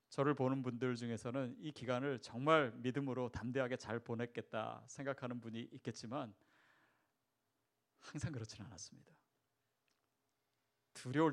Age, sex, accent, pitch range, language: 30-49, male, native, 120-200 Hz, Korean